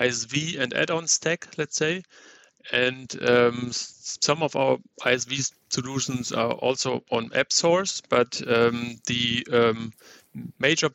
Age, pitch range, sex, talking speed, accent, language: 30-49, 120-145 Hz, male, 125 wpm, German, English